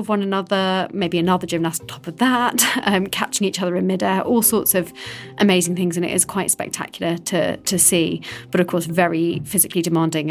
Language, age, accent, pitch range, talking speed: English, 30-49, British, 170-195 Hz, 205 wpm